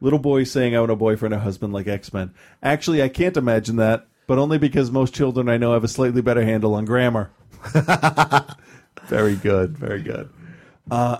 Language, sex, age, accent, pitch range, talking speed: English, male, 40-59, American, 105-130 Hz, 190 wpm